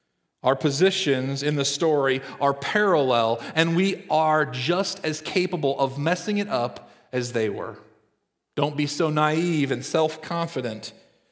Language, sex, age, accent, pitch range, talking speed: English, male, 40-59, American, 135-180 Hz, 140 wpm